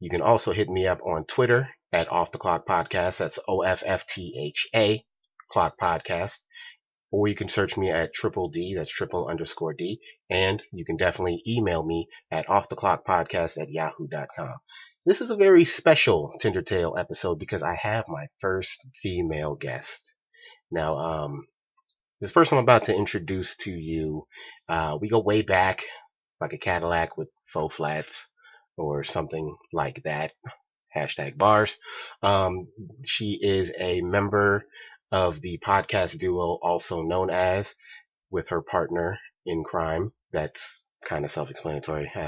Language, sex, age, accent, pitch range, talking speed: English, male, 30-49, American, 85-115 Hz, 150 wpm